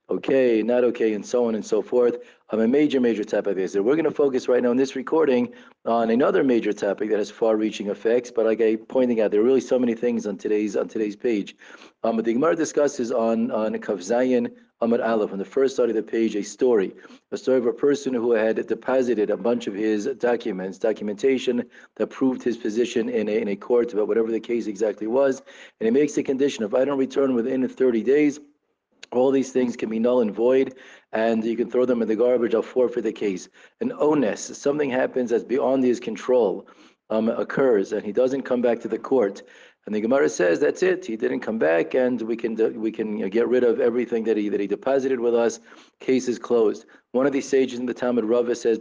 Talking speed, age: 230 wpm, 40-59